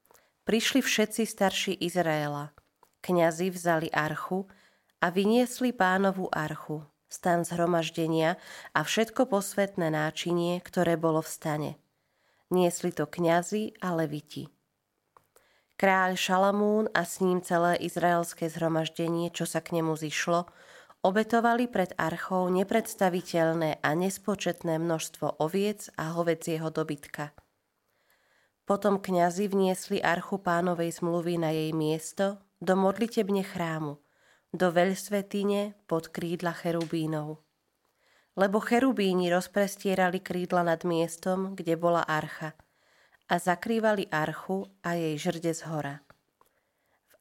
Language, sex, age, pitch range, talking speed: Slovak, female, 20-39, 165-190 Hz, 110 wpm